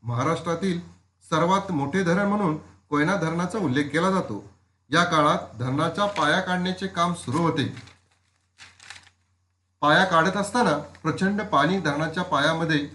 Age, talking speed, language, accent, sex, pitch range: 40-59, 115 wpm, Marathi, native, male, 125-175 Hz